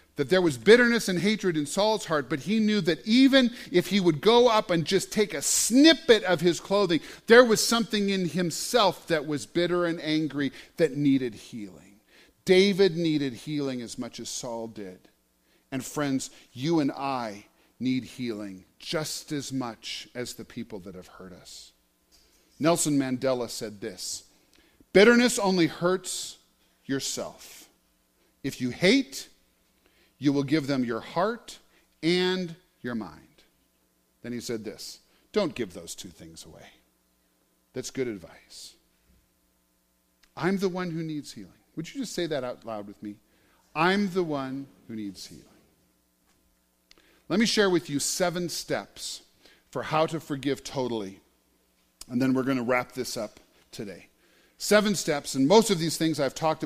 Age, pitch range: 40-59, 110-180 Hz